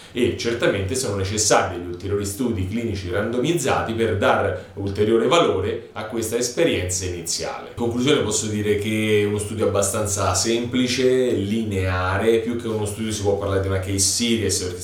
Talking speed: 160 wpm